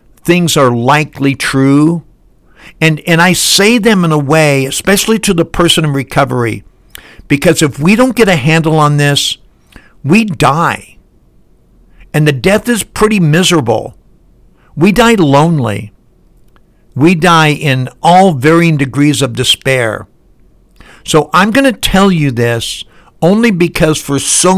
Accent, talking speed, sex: American, 140 wpm, male